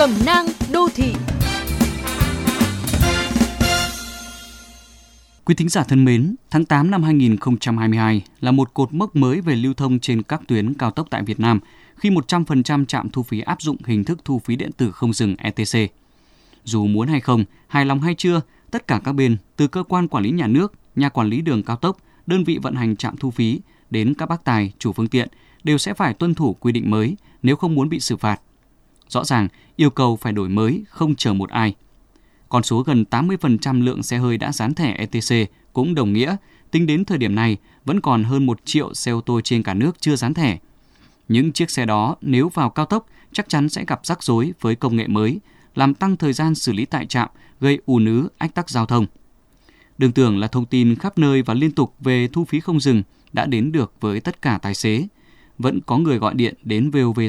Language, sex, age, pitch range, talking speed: Vietnamese, male, 20-39, 115-155 Hz, 215 wpm